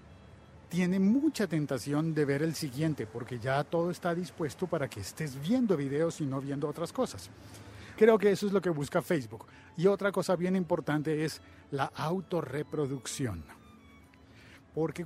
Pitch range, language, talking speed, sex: 130-175 Hz, Spanish, 155 wpm, male